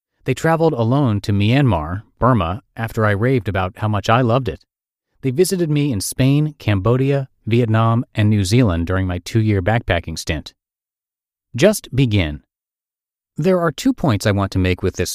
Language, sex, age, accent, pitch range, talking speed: English, male, 30-49, American, 95-135 Hz, 165 wpm